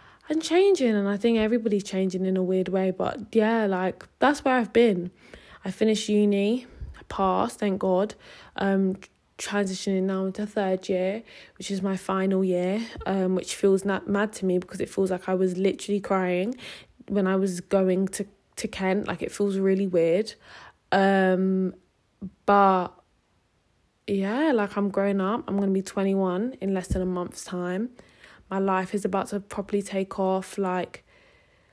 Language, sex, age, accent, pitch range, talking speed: English, female, 20-39, British, 185-205 Hz, 170 wpm